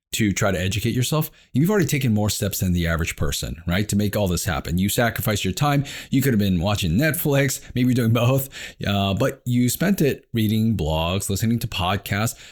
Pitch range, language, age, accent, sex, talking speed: 95-120 Hz, English, 30-49, American, male, 205 wpm